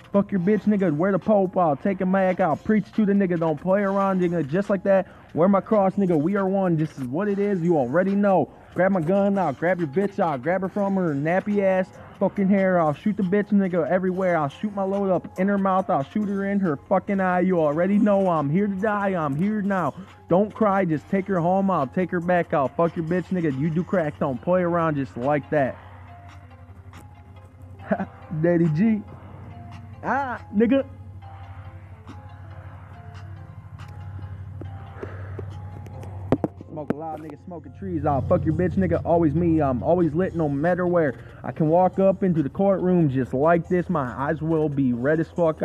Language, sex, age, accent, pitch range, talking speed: English, male, 20-39, American, 135-190 Hz, 195 wpm